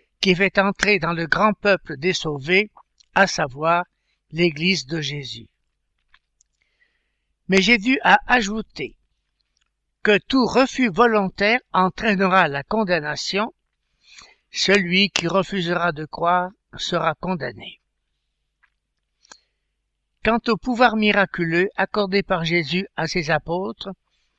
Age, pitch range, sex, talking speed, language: 60-79, 170-215 Hz, male, 105 wpm, French